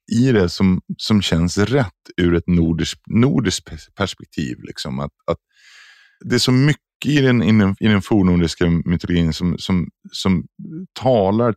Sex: male